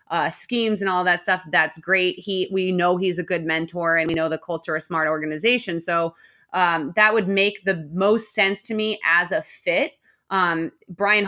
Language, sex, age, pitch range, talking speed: English, female, 20-39, 170-205 Hz, 205 wpm